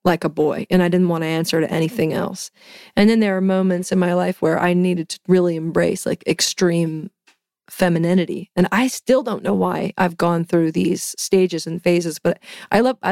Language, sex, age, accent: English, female, 30-49, American